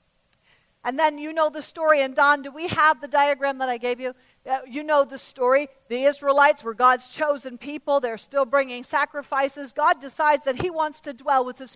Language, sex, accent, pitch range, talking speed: English, female, American, 245-290 Hz, 205 wpm